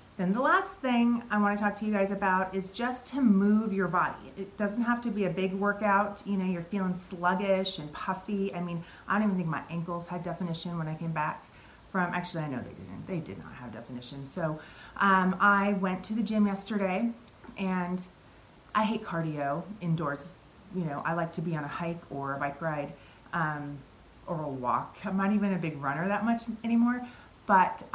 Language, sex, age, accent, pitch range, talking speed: English, female, 30-49, American, 170-210 Hz, 210 wpm